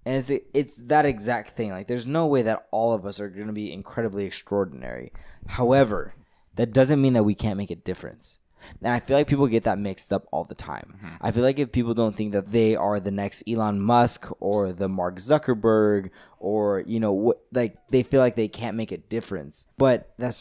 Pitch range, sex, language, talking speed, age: 105-125 Hz, male, English, 220 wpm, 20-39